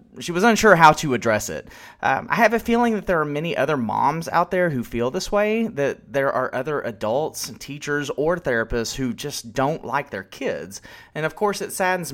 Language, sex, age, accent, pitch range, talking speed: English, male, 30-49, American, 120-155 Hz, 215 wpm